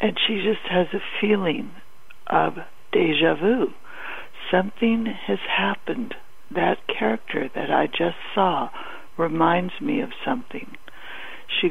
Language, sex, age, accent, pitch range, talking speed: English, female, 60-79, American, 175-225 Hz, 120 wpm